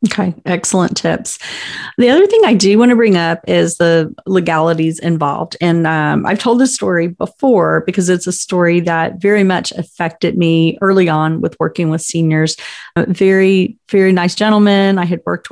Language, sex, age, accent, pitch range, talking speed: English, female, 40-59, American, 170-200 Hz, 180 wpm